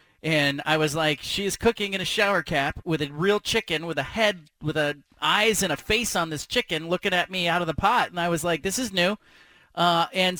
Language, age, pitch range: English, 30-49, 150-195 Hz